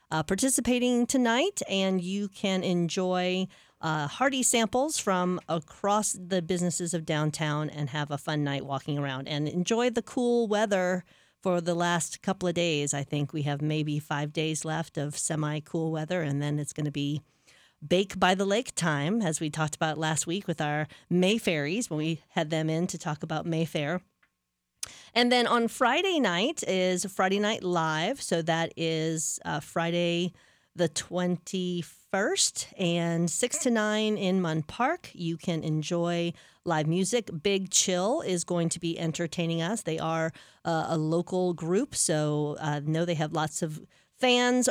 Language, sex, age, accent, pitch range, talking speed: English, female, 40-59, American, 155-195 Hz, 165 wpm